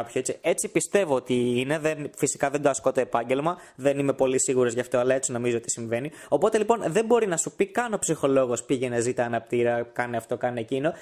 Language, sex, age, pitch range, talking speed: Greek, male, 20-39, 135-185 Hz, 225 wpm